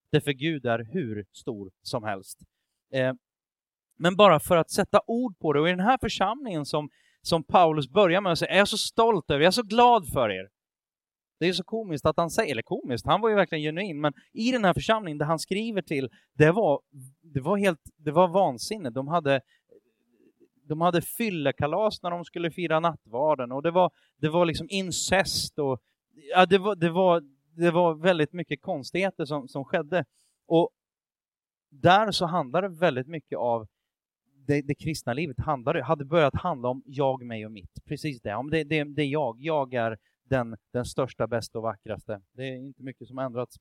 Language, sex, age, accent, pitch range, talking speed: Swedish, male, 30-49, native, 130-180 Hz, 200 wpm